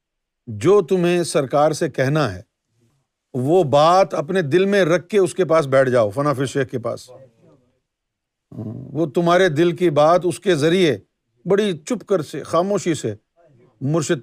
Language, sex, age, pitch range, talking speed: Urdu, male, 50-69, 125-180 Hz, 155 wpm